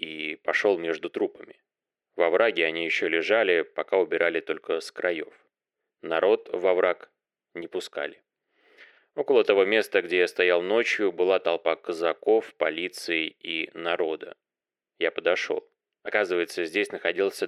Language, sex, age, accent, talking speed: Russian, male, 20-39, native, 125 wpm